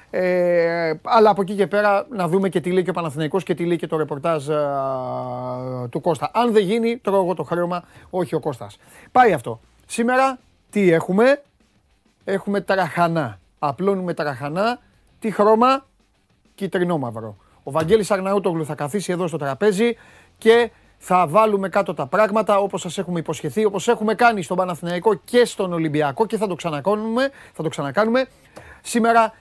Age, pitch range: 30-49, 160-215 Hz